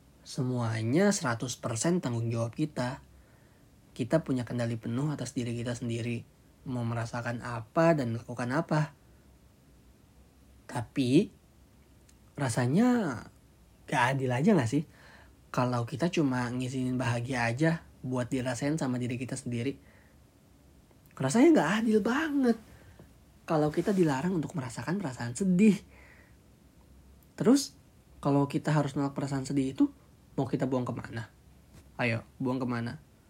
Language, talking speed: Indonesian, 115 wpm